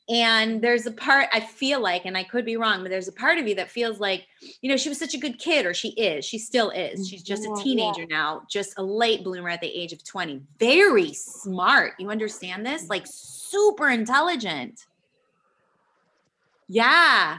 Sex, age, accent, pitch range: female, 20-39, American, 195-250 Hz